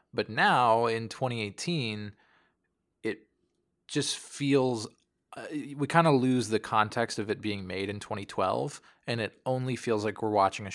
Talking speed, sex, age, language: 145 wpm, male, 20-39, English